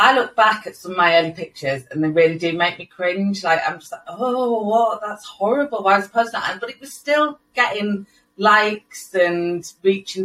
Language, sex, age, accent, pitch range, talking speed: English, female, 30-49, British, 155-195 Hz, 225 wpm